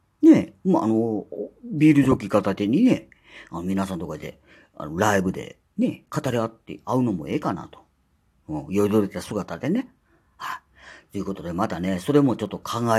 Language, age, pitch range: Japanese, 40-59, 100-155 Hz